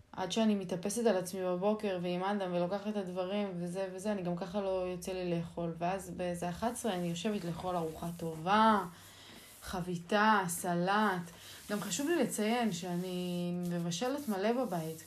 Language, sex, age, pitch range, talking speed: Hebrew, female, 20-39, 175-215 Hz, 145 wpm